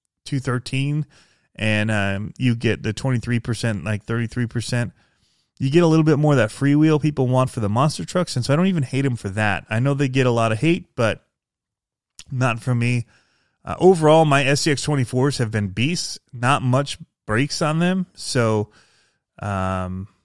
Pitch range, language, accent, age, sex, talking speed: 110-150 Hz, English, American, 30-49, male, 185 wpm